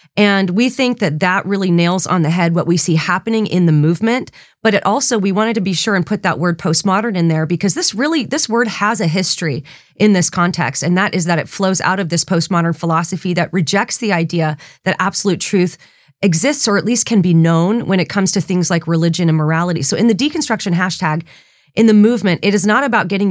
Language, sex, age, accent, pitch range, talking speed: English, female, 30-49, American, 165-215 Hz, 230 wpm